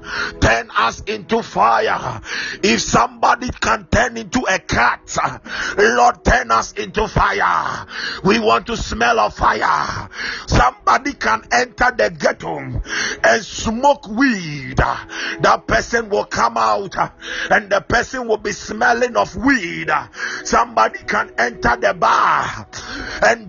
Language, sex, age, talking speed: English, male, 50-69, 125 wpm